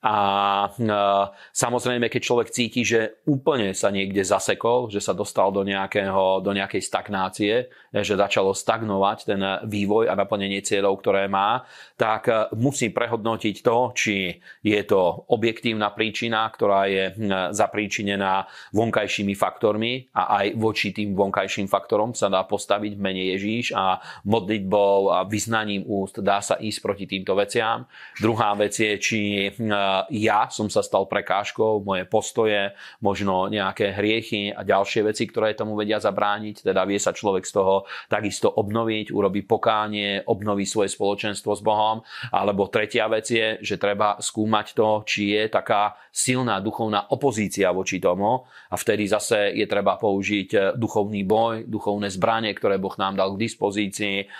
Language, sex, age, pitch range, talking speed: Slovak, male, 30-49, 100-110 Hz, 150 wpm